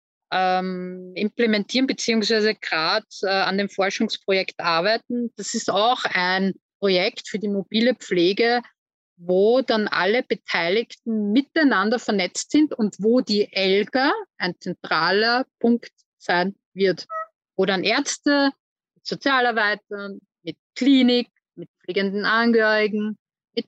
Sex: female